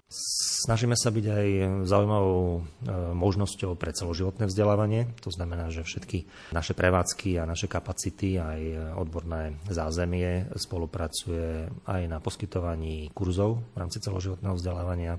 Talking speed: 120 wpm